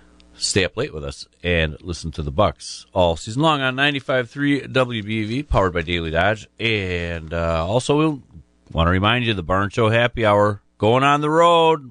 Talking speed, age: 190 wpm, 40-59